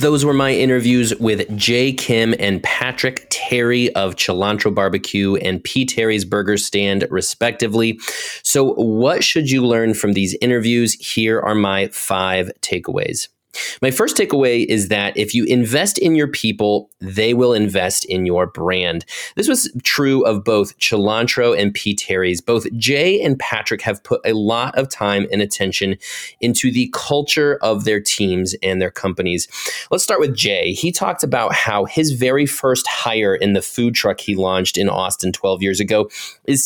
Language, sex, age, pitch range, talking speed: English, male, 30-49, 100-130 Hz, 170 wpm